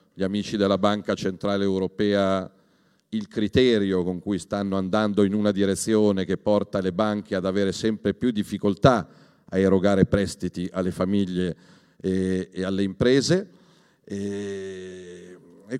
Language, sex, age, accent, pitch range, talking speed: Italian, male, 40-59, native, 100-130 Hz, 125 wpm